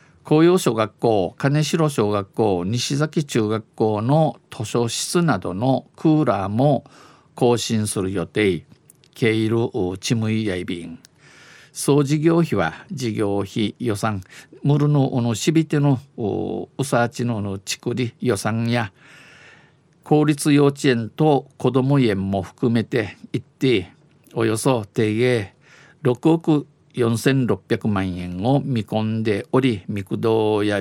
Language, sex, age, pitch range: Japanese, male, 50-69, 110-140 Hz